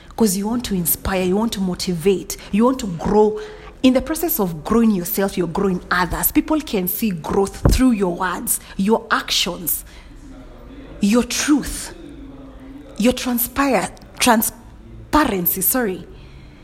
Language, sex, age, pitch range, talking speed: English, female, 30-49, 180-245 Hz, 130 wpm